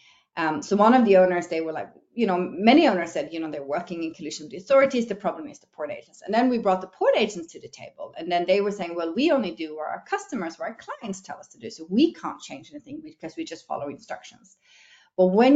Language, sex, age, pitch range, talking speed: English, female, 40-59, 170-225 Hz, 270 wpm